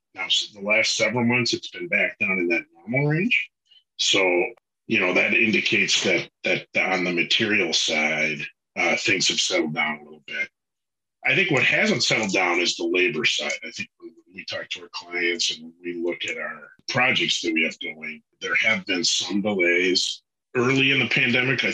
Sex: male